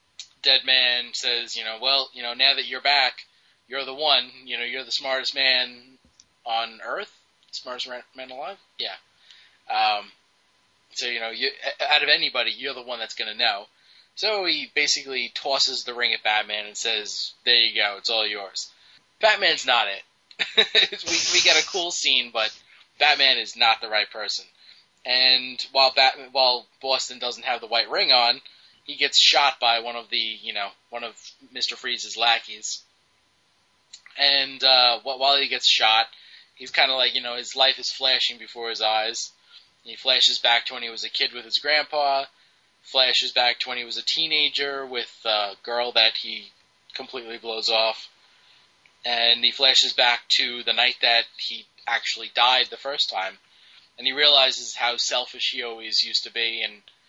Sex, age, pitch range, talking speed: male, 20-39, 115-135 Hz, 180 wpm